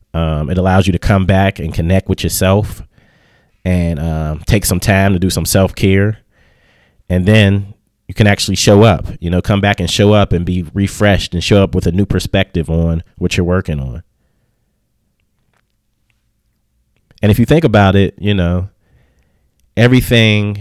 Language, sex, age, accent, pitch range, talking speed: English, male, 30-49, American, 85-105 Hz, 170 wpm